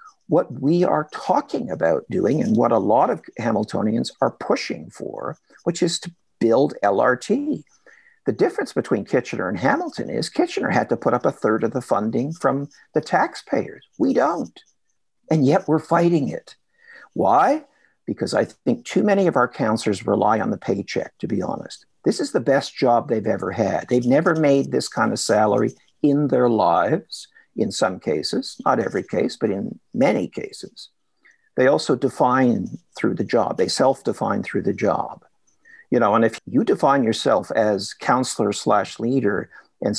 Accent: American